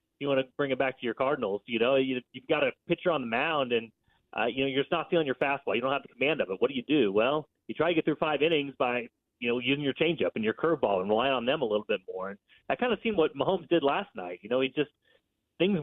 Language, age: English, 30-49